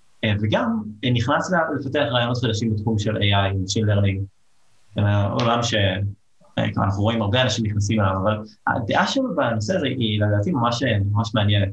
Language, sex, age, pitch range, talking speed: Hebrew, male, 20-39, 100-115 Hz, 165 wpm